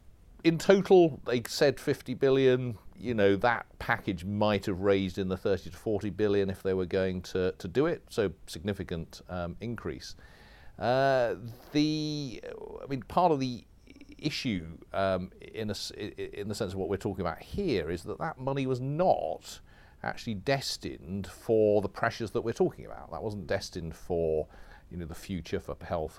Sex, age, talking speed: male, 40-59, 175 wpm